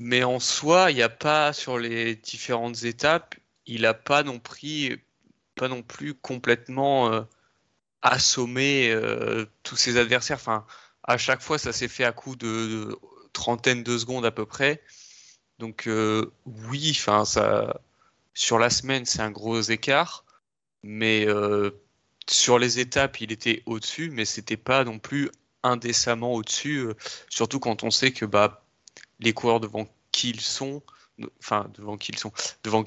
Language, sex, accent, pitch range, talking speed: French, male, French, 110-130 Hz, 160 wpm